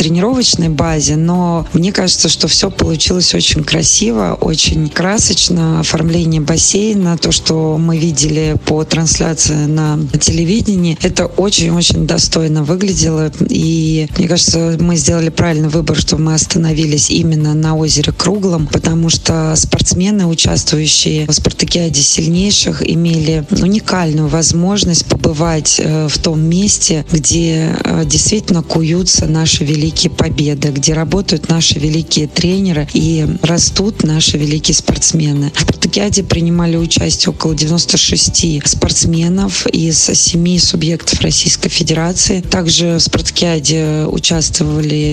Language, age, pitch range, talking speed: Russian, 20-39, 155-175 Hz, 115 wpm